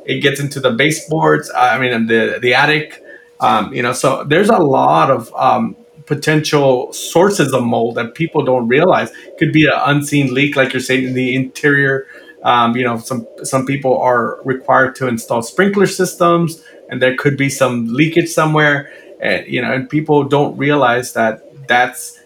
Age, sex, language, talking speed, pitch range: 30-49, male, English, 180 wpm, 125-155 Hz